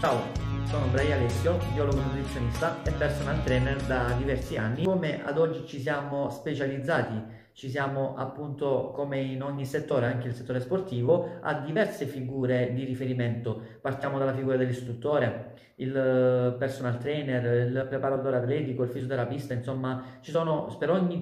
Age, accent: 40-59, native